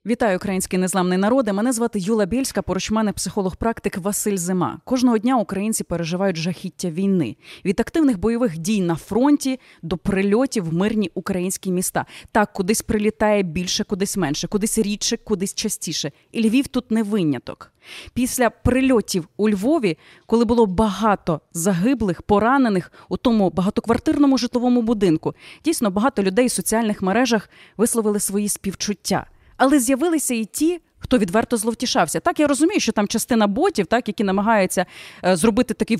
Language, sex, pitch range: Ukrainian, female, 195-260 Hz